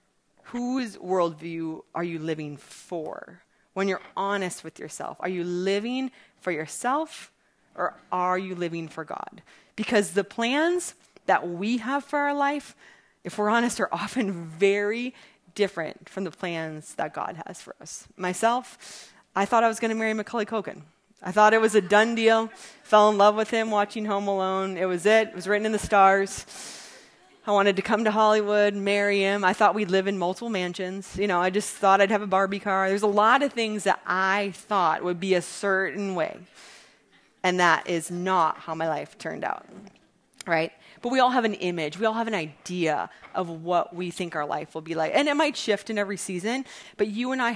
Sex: female